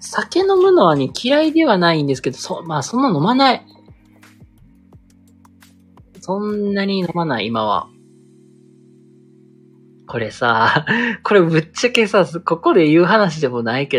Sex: male